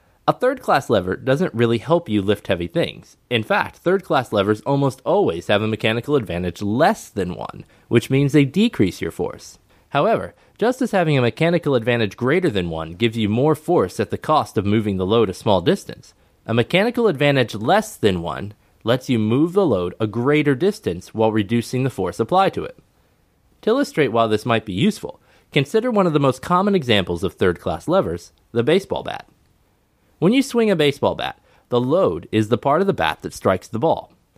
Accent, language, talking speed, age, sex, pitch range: American, English, 195 wpm, 20-39, male, 105-165 Hz